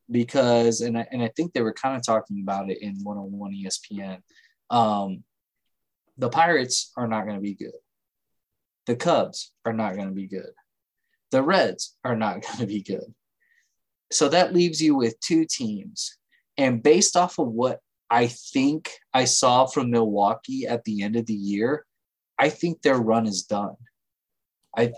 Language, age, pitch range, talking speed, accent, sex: English, 20-39, 110-150 Hz, 170 wpm, American, male